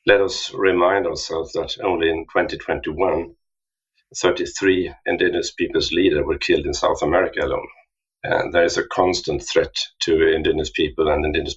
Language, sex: English, male